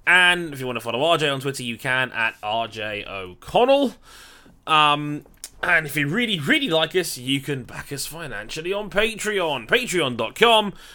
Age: 20-39